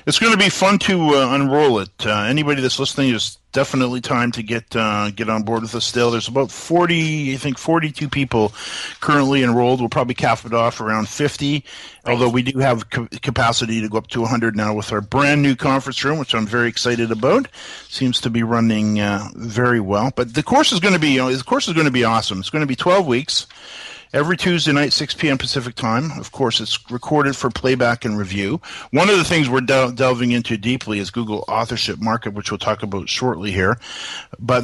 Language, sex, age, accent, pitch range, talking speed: English, male, 50-69, American, 115-140 Hz, 225 wpm